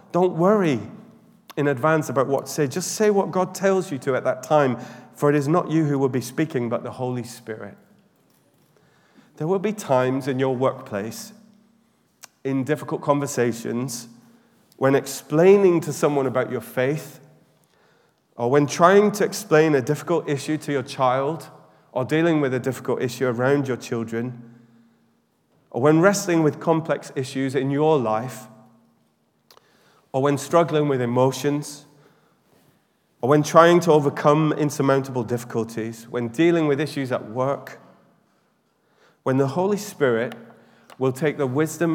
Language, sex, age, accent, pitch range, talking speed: English, male, 30-49, British, 130-165 Hz, 145 wpm